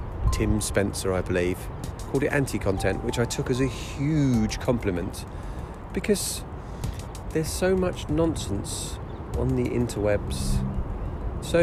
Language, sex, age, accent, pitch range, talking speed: English, male, 40-59, British, 80-115 Hz, 115 wpm